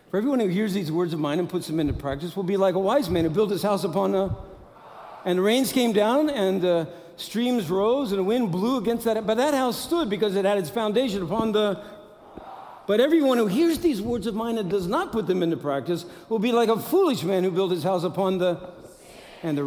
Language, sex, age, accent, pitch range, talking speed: English, male, 60-79, American, 125-195 Hz, 245 wpm